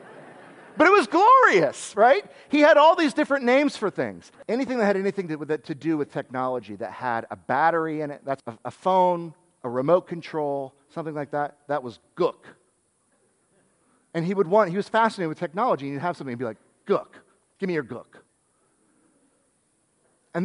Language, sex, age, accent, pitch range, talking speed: English, male, 40-59, American, 155-250 Hz, 190 wpm